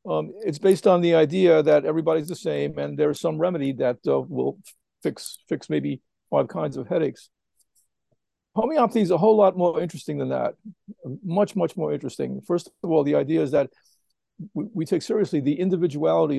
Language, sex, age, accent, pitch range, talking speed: English, male, 50-69, American, 145-175 Hz, 185 wpm